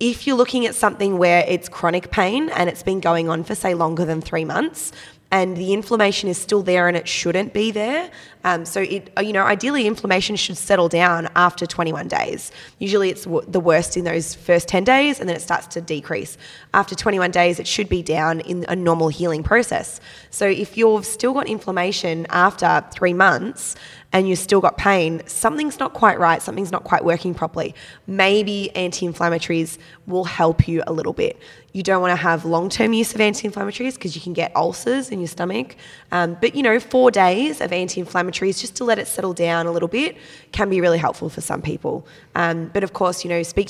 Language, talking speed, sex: English, 205 wpm, female